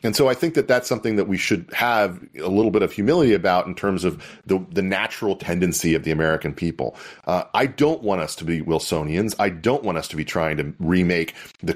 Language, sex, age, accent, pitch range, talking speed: English, male, 40-59, American, 90-110 Hz, 235 wpm